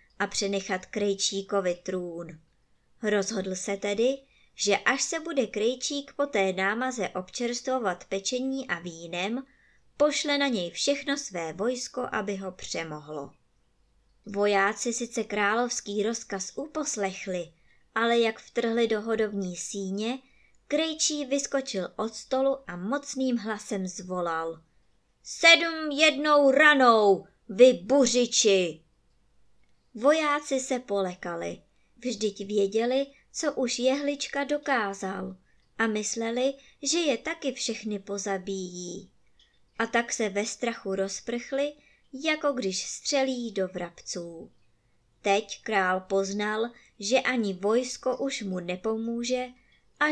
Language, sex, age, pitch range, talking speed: Czech, male, 20-39, 195-260 Hz, 105 wpm